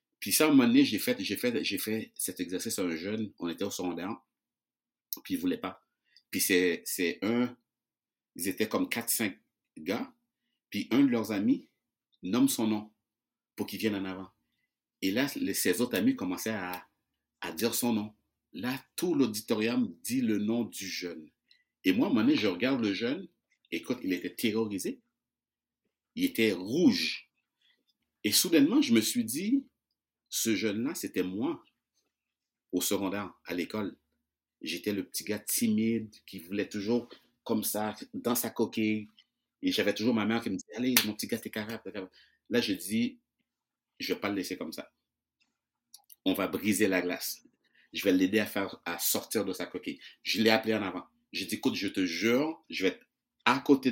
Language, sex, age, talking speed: French, male, 60-79, 190 wpm